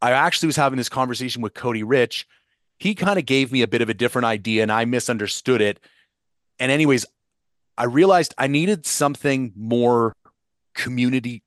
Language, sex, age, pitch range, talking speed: English, male, 30-49, 105-135 Hz, 175 wpm